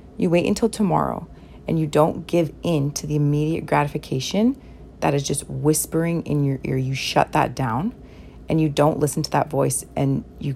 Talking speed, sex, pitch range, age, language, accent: 190 wpm, female, 140-165 Hz, 30-49, English, American